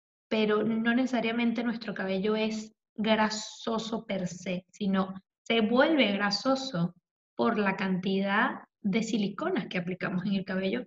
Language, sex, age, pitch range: Spanish, female, 10-29, 200-245 Hz